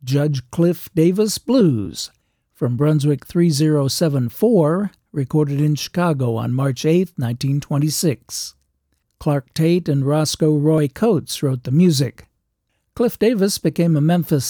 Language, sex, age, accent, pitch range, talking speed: English, male, 60-79, American, 140-175 Hz, 115 wpm